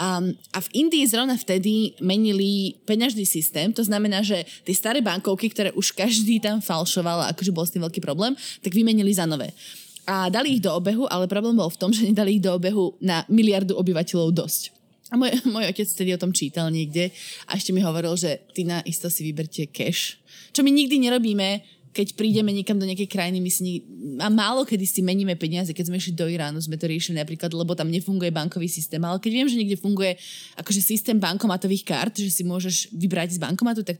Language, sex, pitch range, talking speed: Slovak, female, 175-215 Hz, 210 wpm